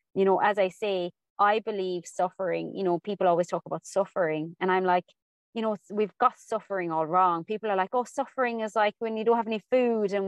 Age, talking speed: 20-39, 230 wpm